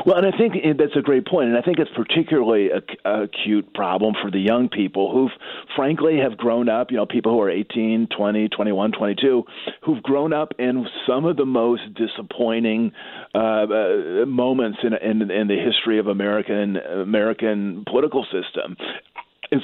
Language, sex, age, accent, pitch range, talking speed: English, male, 40-59, American, 105-130 Hz, 170 wpm